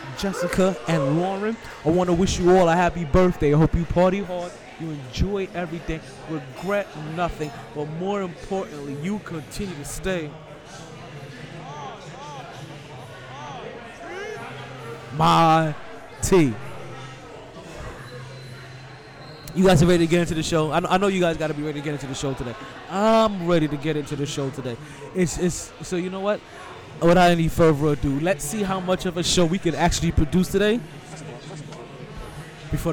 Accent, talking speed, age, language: American, 155 wpm, 20-39, English